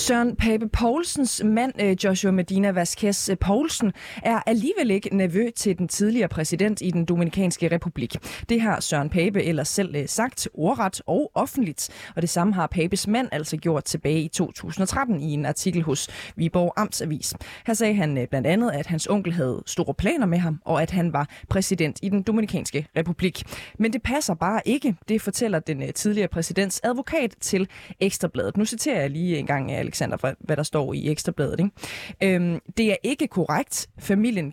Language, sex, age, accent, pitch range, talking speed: Danish, female, 20-39, native, 160-215 Hz, 175 wpm